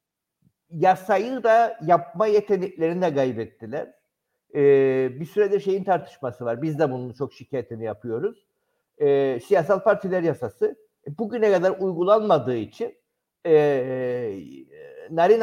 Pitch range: 160-230 Hz